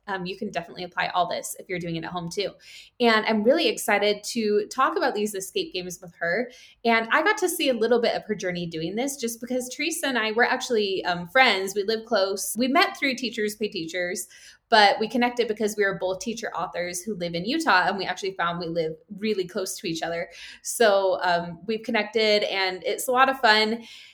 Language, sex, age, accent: English, female, 20-39, American